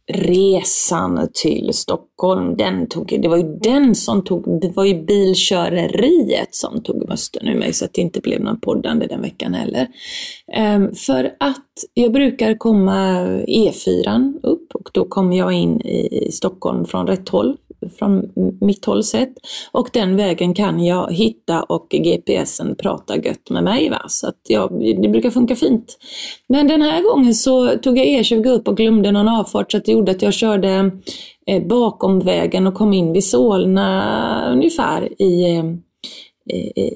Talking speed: 165 wpm